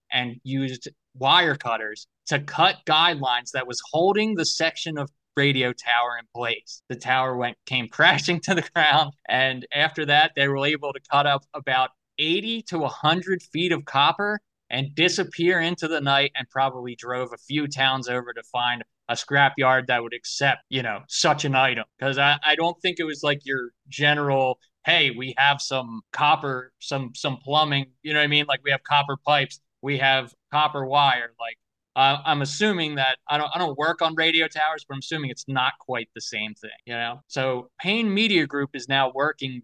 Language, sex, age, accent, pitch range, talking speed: English, male, 20-39, American, 125-155 Hz, 195 wpm